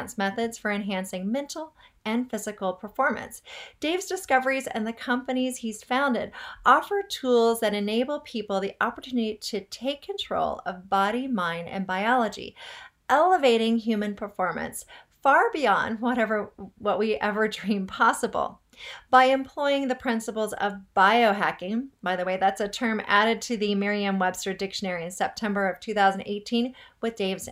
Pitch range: 200-255 Hz